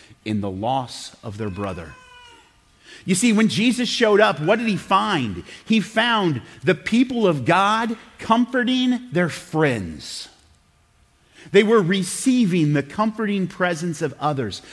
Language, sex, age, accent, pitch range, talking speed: English, male, 30-49, American, 150-205 Hz, 135 wpm